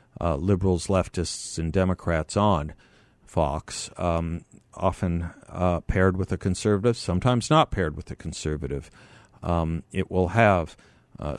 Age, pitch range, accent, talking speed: 50-69, 85-105 Hz, American, 130 wpm